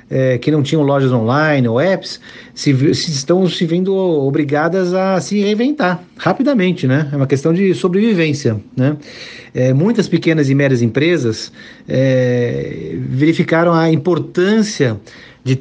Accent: Brazilian